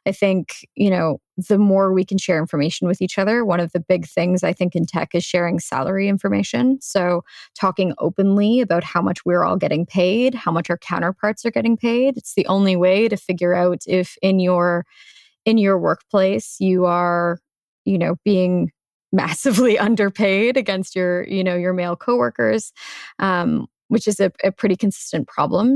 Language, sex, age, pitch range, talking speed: English, female, 20-39, 175-205 Hz, 180 wpm